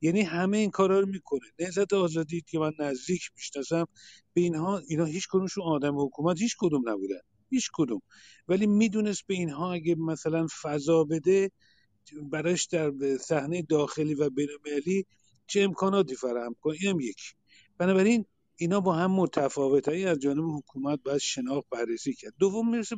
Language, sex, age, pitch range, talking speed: Persian, male, 50-69, 140-185 Hz, 150 wpm